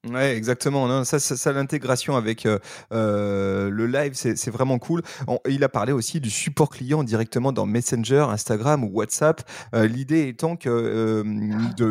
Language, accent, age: French, French, 30-49